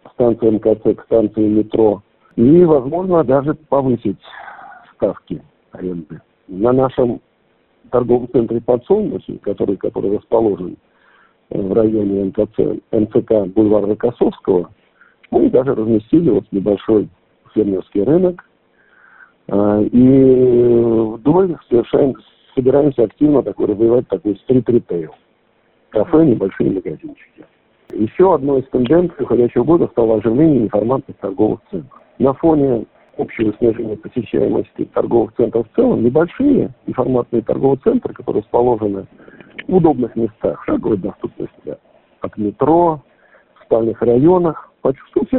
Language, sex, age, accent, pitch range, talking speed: Russian, male, 50-69, native, 110-135 Hz, 110 wpm